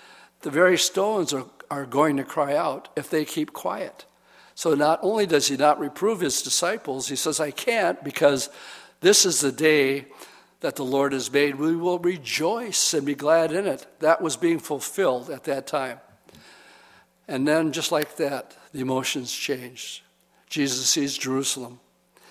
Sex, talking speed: male, 165 wpm